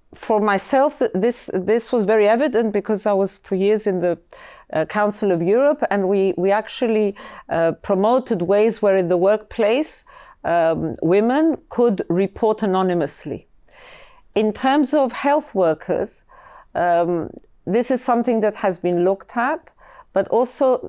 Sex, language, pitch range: female, English, 175-225 Hz